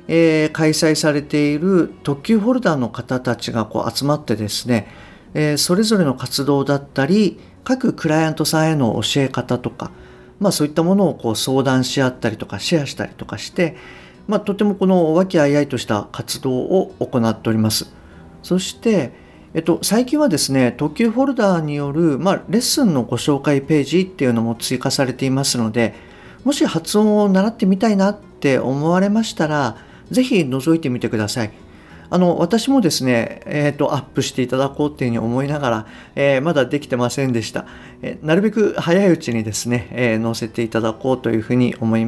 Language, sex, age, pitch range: Japanese, male, 50-69, 120-180 Hz